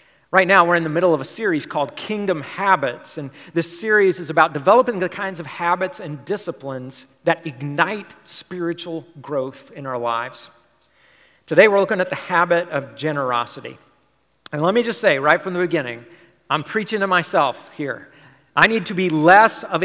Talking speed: 180 wpm